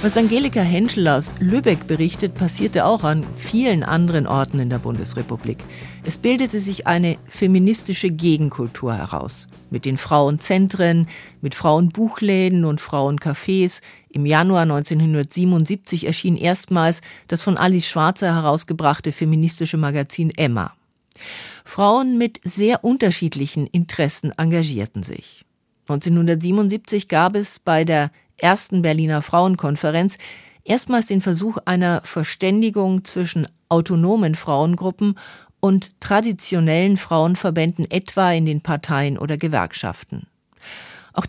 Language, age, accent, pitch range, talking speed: German, 50-69, German, 150-190 Hz, 110 wpm